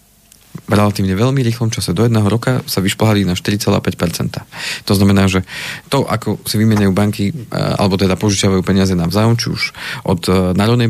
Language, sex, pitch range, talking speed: Slovak, male, 95-115 Hz, 160 wpm